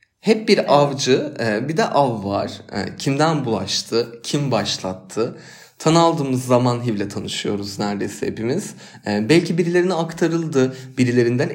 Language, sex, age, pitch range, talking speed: Turkish, male, 30-49, 110-155 Hz, 115 wpm